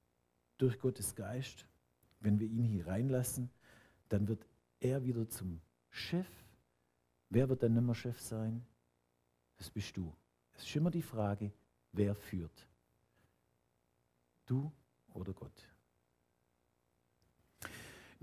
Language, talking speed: German, 110 wpm